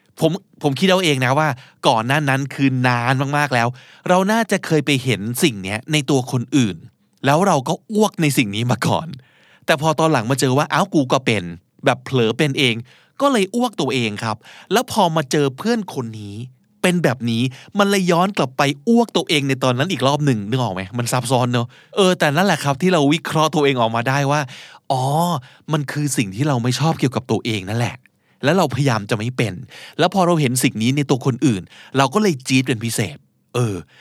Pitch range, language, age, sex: 125-170 Hz, Thai, 20-39, male